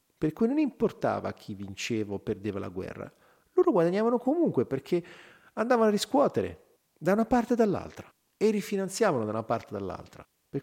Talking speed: 170 wpm